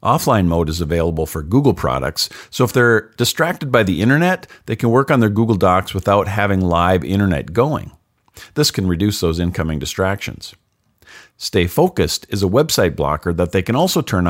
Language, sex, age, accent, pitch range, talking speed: English, male, 50-69, American, 90-125 Hz, 180 wpm